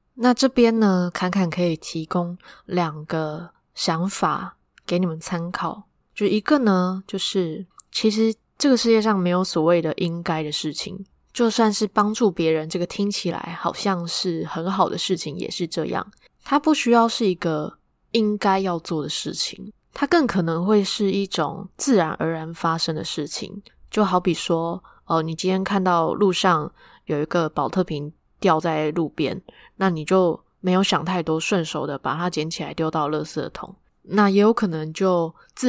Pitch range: 160-200 Hz